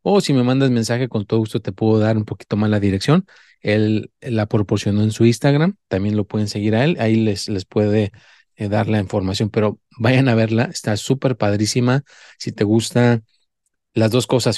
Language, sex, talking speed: Spanish, male, 200 wpm